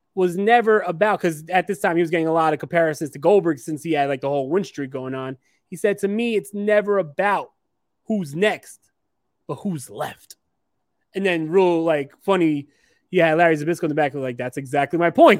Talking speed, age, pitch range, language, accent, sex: 215 wpm, 20-39, 160-215 Hz, English, American, male